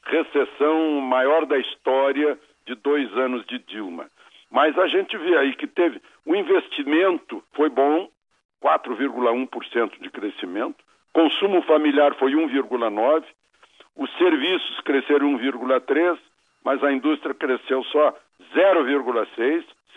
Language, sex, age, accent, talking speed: Portuguese, male, 60-79, Brazilian, 110 wpm